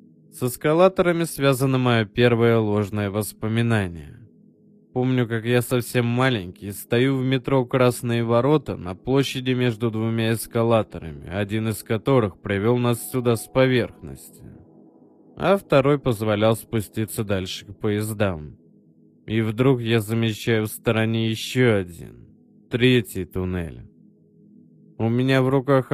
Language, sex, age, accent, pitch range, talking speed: Russian, male, 20-39, native, 105-125 Hz, 120 wpm